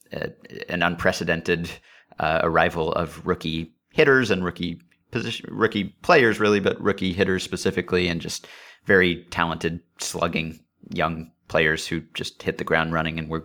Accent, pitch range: American, 85-105 Hz